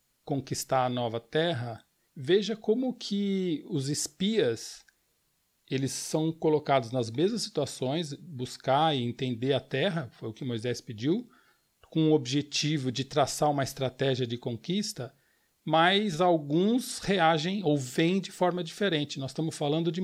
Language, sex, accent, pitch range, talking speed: Portuguese, male, Brazilian, 135-175 Hz, 140 wpm